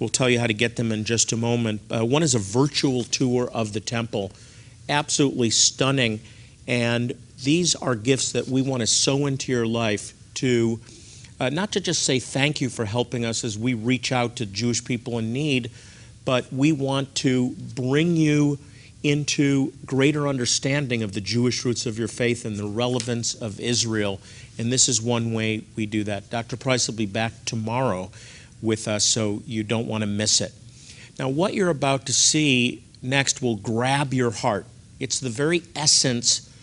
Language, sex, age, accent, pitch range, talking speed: English, male, 50-69, American, 115-135 Hz, 185 wpm